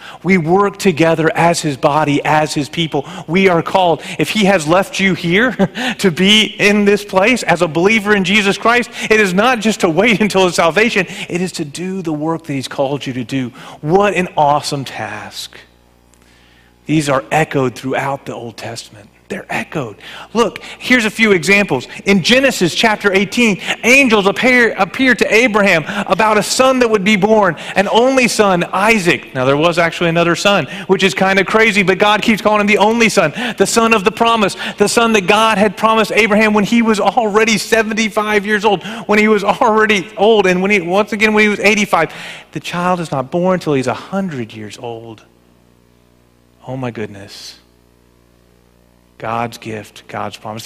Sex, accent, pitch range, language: male, American, 155-215 Hz, English